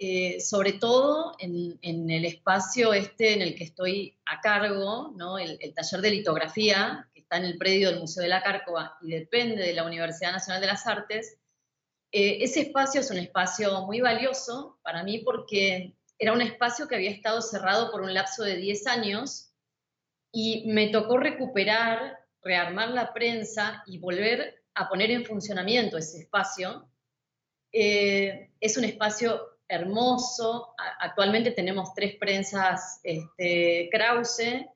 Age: 30-49